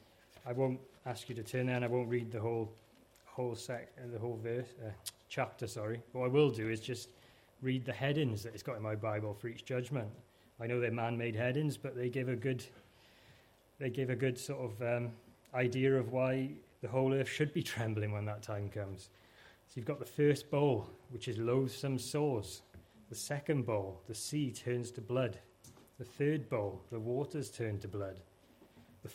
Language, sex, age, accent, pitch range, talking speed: English, male, 30-49, British, 110-130 Hz, 200 wpm